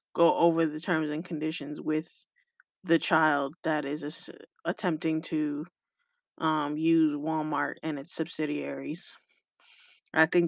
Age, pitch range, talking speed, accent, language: 20-39, 160-175 Hz, 120 wpm, American, English